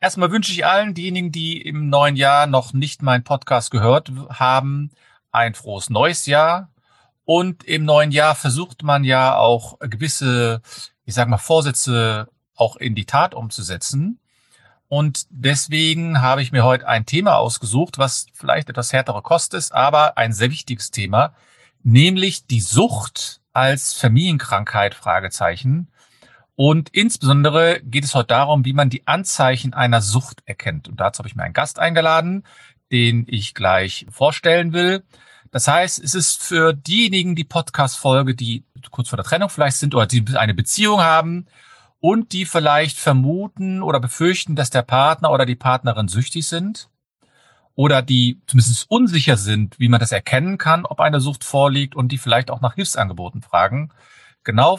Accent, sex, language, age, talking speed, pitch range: German, male, German, 40-59, 160 wpm, 125-160 Hz